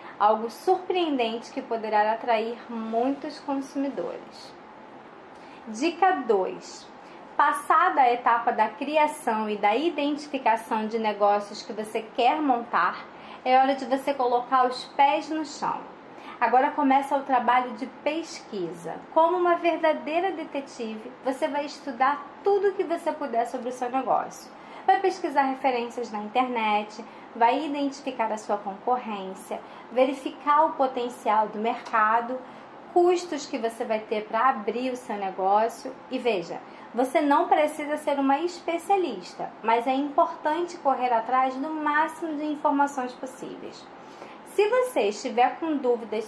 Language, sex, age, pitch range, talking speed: Portuguese, female, 20-39, 230-300 Hz, 130 wpm